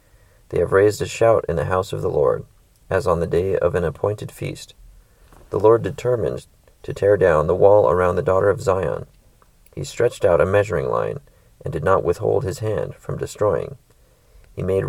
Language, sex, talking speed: English, male, 195 wpm